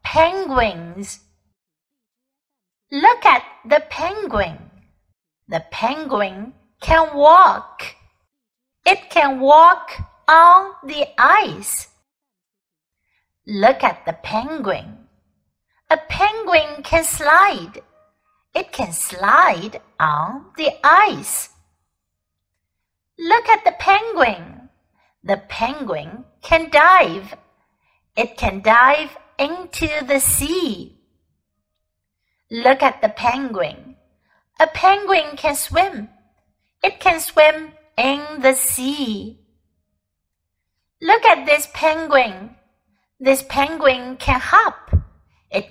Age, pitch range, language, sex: 60-79, 195-325 Hz, Chinese, female